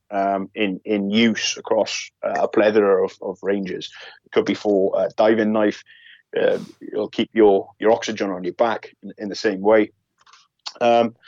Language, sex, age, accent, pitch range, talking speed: English, male, 30-49, British, 100-120 Hz, 180 wpm